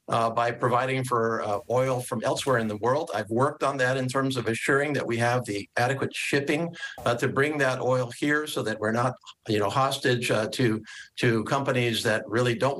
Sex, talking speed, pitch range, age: male, 210 wpm, 115-135 Hz, 50-69